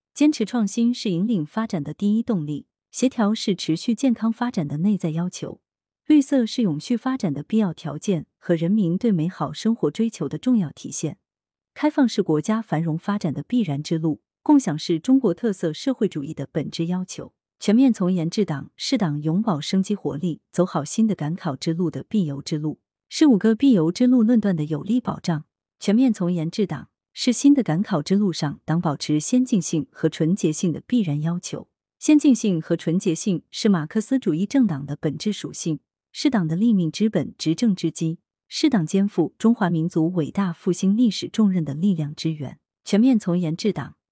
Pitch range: 160-220 Hz